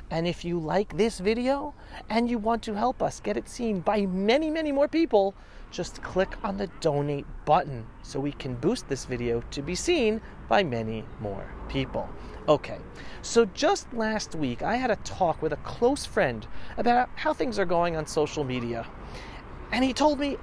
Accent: American